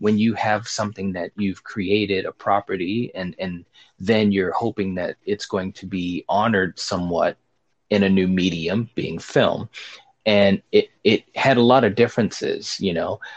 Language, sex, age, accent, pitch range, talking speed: English, male, 30-49, American, 100-130 Hz, 165 wpm